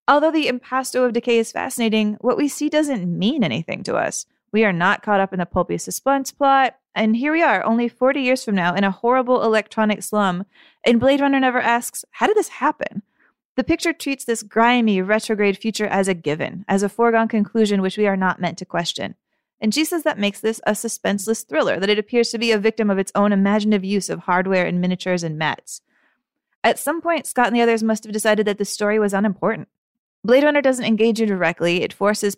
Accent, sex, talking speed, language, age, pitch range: American, female, 220 wpm, English, 30-49, 195-240 Hz